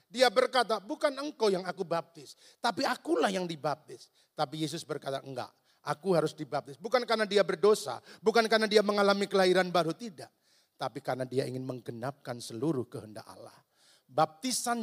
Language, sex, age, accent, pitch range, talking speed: Indonesian, male, 40-59, native, 155-220 Hz, 155 wpm